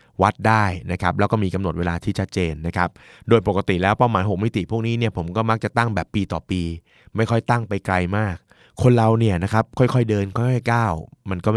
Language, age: Thai, 20-39